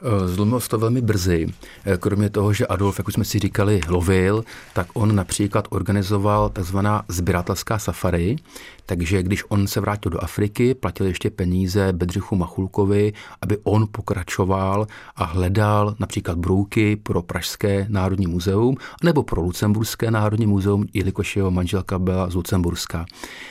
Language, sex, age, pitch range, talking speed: Czech, male, 40-59, 95-105 Hz, 145 wpm